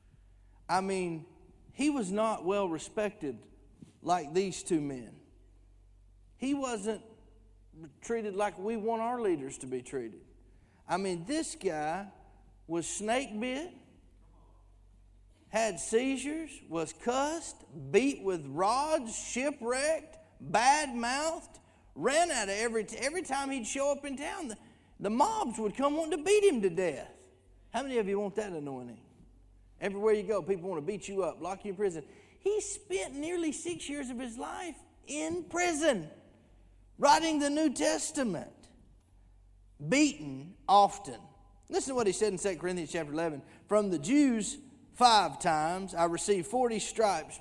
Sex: male